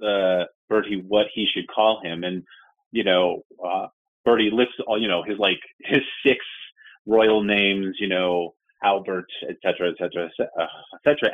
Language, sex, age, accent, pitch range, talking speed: English, male, 30-49, American, 95-145 Hz, 150 wpm